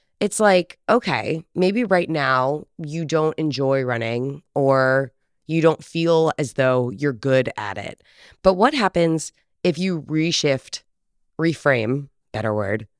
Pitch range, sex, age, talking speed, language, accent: 130-180 Hz, female, 20-39, 135 wpm, English, American